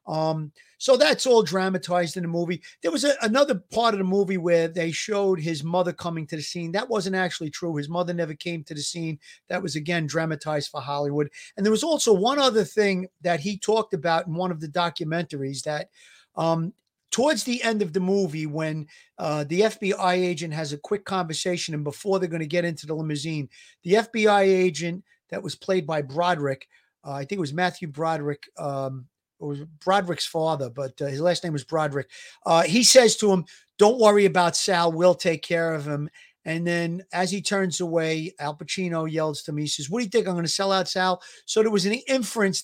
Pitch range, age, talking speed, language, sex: 160-195 Hz, 40-59, 215 wpm, English, male